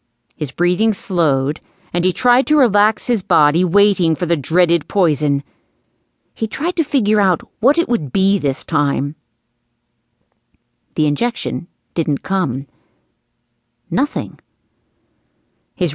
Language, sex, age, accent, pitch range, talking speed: English, female, 50-69, American, 150-210 Hz, 120 wpm